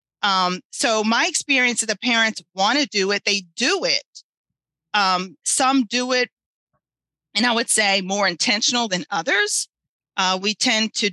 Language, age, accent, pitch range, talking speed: English, 40-59, American, 180-220 Hz, 155 wpm